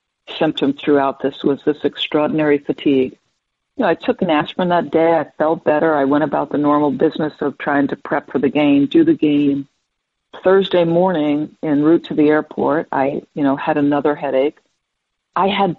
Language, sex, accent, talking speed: English, female, American, 185 wpm